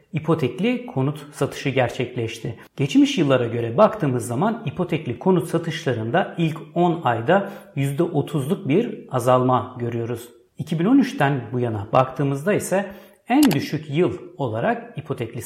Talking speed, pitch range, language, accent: 115 wpm, 125-200 Hz, Turkish, native